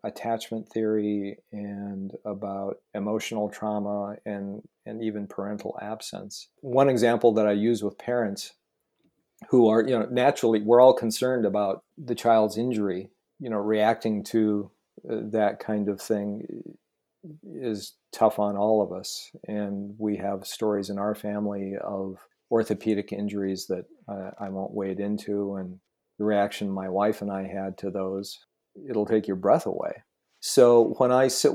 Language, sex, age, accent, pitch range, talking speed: English, male, 50-69, American, 100-115 Hz, 150 wpm